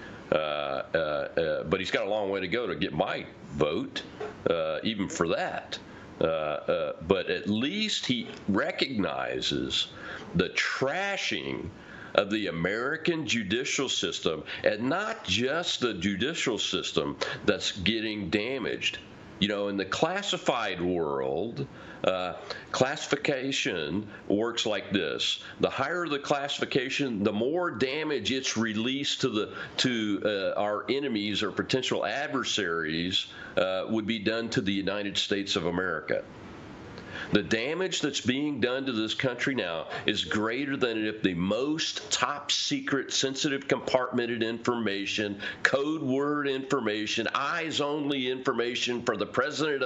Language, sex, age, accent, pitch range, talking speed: English, male, 50-69, American, 105-145 Hz, 130 wpm